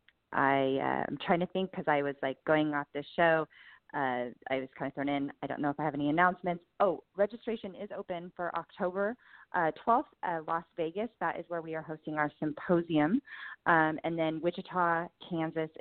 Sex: female